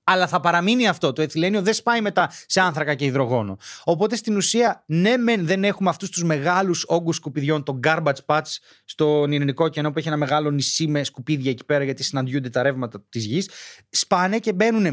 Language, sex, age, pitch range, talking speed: Greek, male, 30-49, 155-215 Hz, 195 wpm